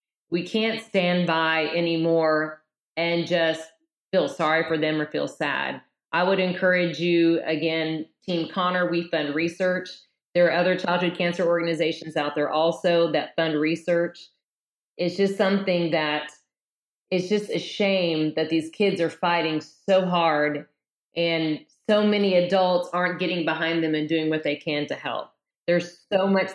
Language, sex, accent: English, female, American